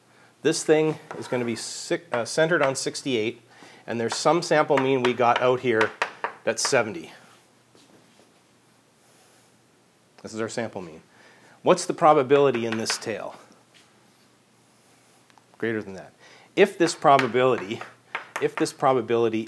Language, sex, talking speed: English, male, 125 wpm